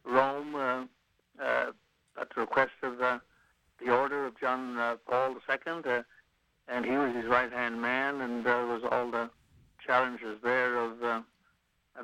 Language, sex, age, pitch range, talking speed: English, male, 60-79, 115-130 Hz, 165 wpm